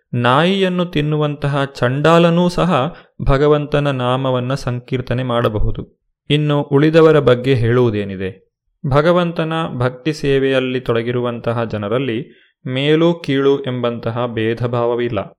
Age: 30-49